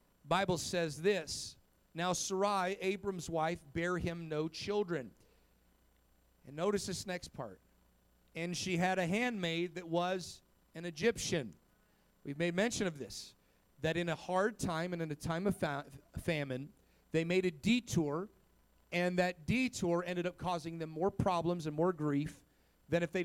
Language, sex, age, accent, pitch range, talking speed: English, male, 40-59, American, 160-195 Hz, 155 wpm